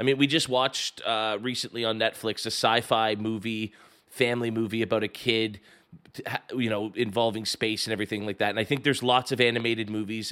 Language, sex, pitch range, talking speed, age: English, male, 110-125 Hz, 190 wpm, 30-49